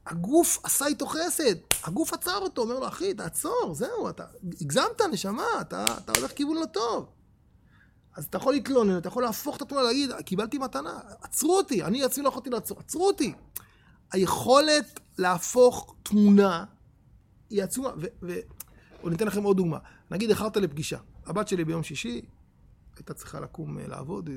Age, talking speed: 30-49, 160 wpm